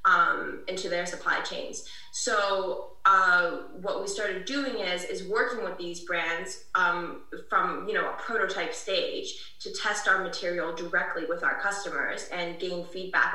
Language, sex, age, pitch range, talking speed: English, female, 10-29, 170-215 Hz, 155 wpm